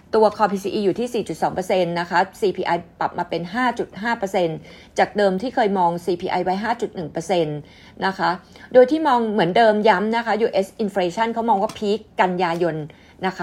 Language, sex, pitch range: Thai, female, 180-220 Hz